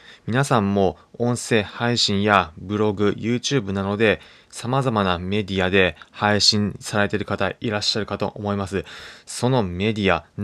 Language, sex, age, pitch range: Japanese, male, 20-39, 100-125 Hz